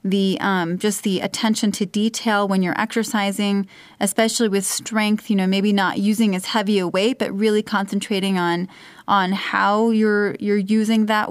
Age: 30-49